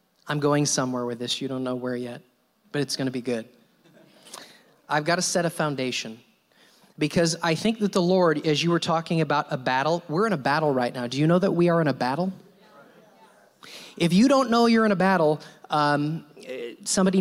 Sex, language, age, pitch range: male, English, 30-49, 150-200 Hz